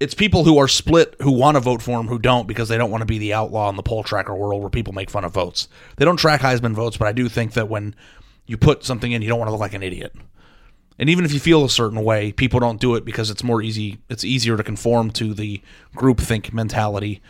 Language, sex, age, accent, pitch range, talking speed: English, male, 30-49, American, 105-125 Hz, 275 wpm